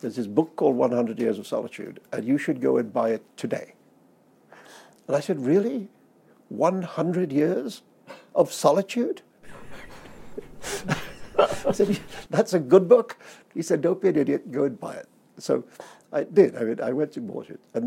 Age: 50-69